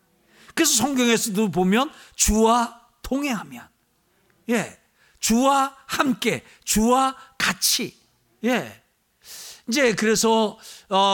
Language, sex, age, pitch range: Korean, male, 50-69, 200-300 Hz